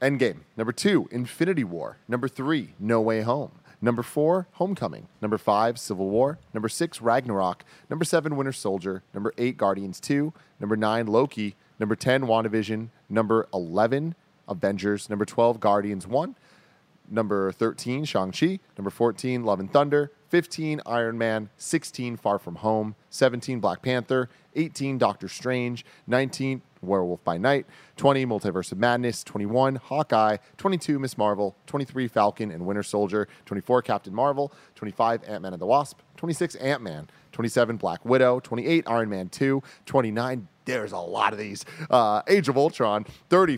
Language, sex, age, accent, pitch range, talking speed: English, male, 30-49, American, 105-140 Hz, 150 wpm